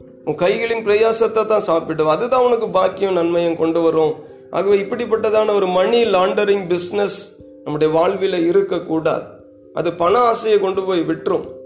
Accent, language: native, Tamil